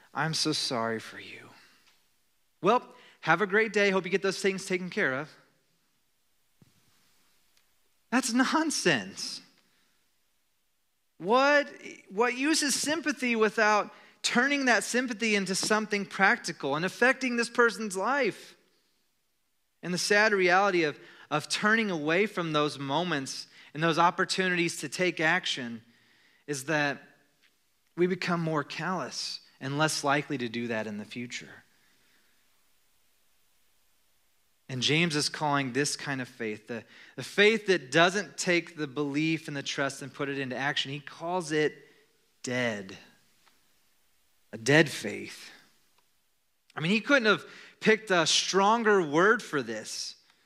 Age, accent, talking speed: 30-49, American, 130 wpm